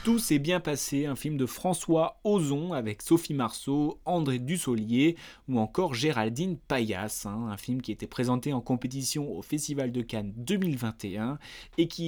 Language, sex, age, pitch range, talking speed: French, male, 20-39, 110-140 Hz, 175 wpm